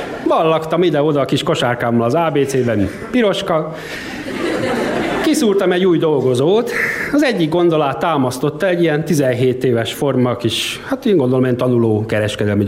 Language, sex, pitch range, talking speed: Hungarian, male, 125-180 Hz, 135 wpm